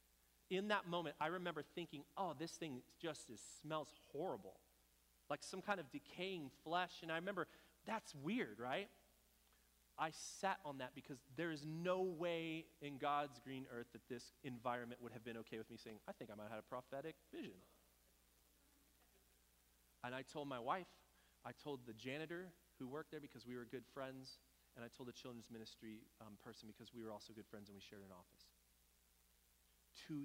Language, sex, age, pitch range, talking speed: English, male, 30-49, 90-140 Hz, 185 wpm